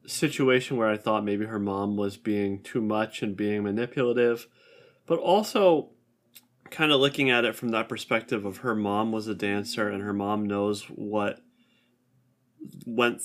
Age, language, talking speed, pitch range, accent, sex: 20-39, English, 165 wpm, 105-120 Hz, American, male